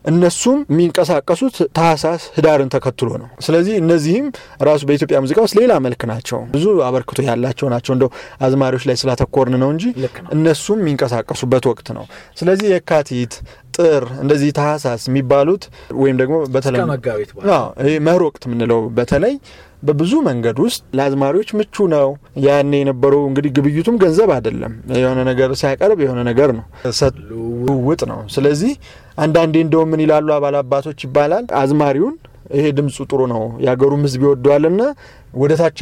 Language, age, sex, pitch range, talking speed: Amharic, 30-49, male, 130-165 Hz, 85 wpm